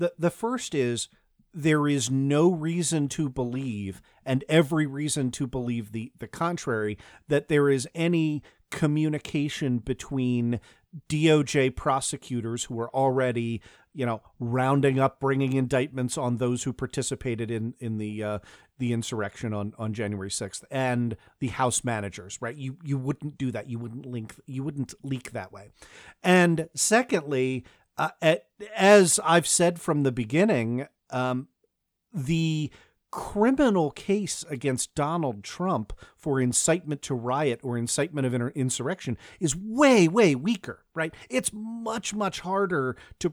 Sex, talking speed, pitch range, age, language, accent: male, 140 wpm, 125-165 Hz, 40-59, English, American